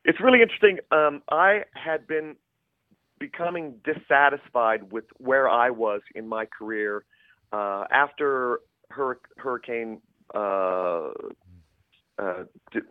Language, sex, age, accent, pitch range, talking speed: English, male, 40-59, American, 110-140 Hz, 105 wpm